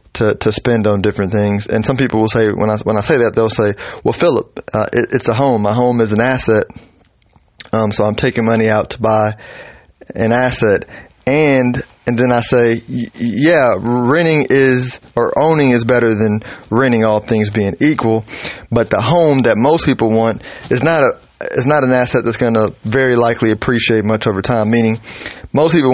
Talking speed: 200 wpm